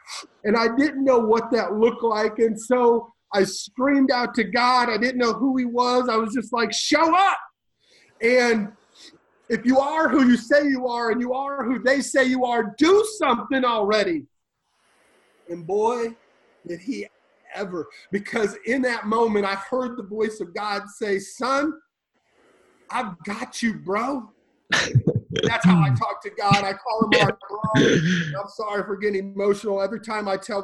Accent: American